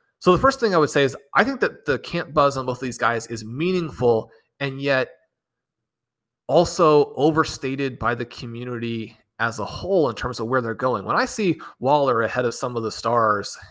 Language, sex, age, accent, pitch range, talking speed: English, male, 30-49, American, 115-145 Hz, 205 wpm